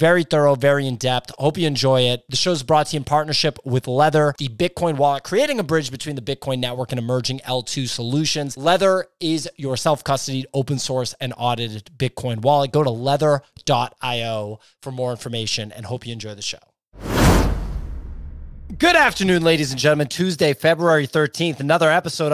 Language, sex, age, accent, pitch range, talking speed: English, male, 20-39, American, 130-160 Hz, 170 wpm